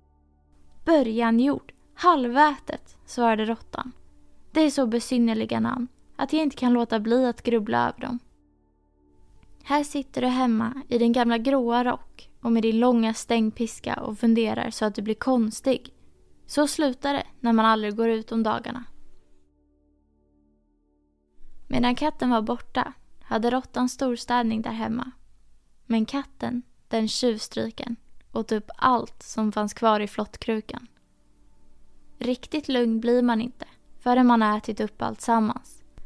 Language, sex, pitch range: Swedish, female, 210-250 Hz